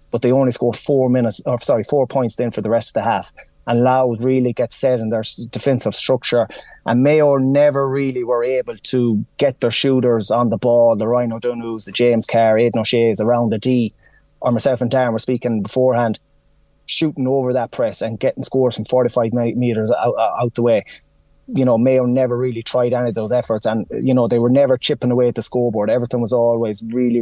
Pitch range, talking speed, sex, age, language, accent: 115-130 Hz, 210 wpm, male, 20-39, English, Irish